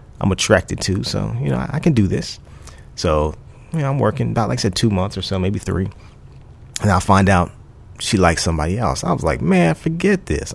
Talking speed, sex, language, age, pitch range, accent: 215 wpm, male, English, 30-49, 85-105 Hz, American